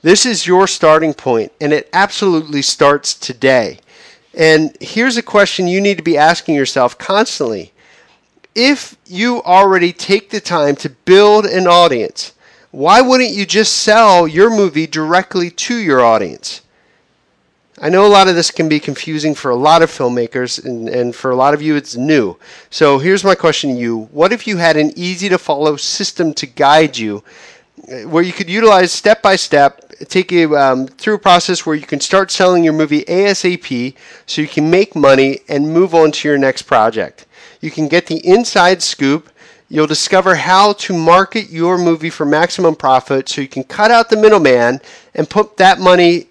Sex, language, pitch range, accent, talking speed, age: male, English, 150-190 Hz, American, 180 wpm, 50-69